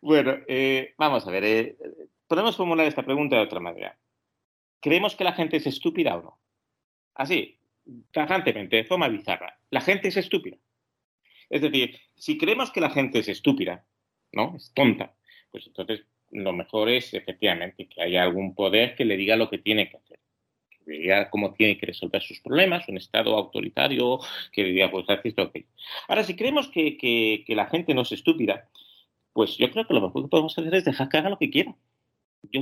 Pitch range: 115-170 Hz